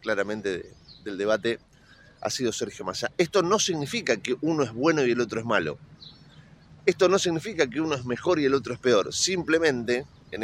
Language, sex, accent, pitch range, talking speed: Spanish, male, Argentinian, 115-160 Hz, 190 wpm